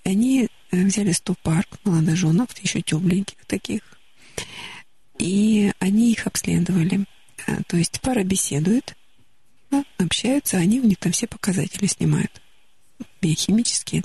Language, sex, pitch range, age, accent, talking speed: Russian, female, 175-215 Hz, 50-69, native, 105 wpm